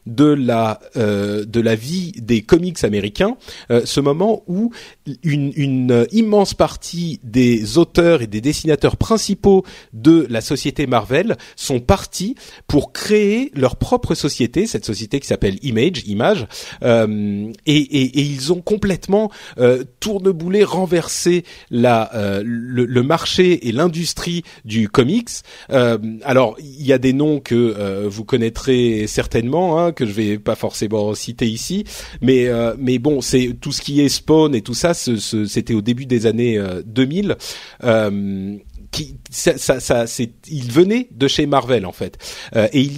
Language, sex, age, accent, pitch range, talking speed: French, male, 40-59, French, 115-170 Hz, 165 wpm